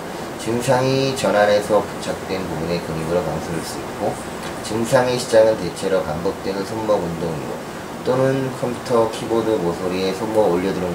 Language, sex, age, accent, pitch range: Korean, male, 30-49, native, 95-125 Hz